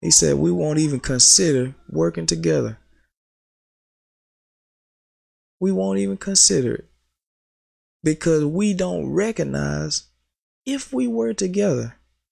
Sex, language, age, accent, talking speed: male, English, 20-39, American, 100 wpm